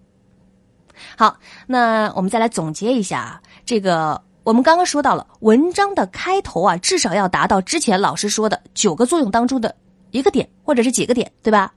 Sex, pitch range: female, 185-280 Hz